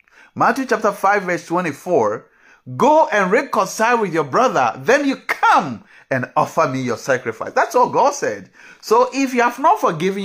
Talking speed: 170 wpm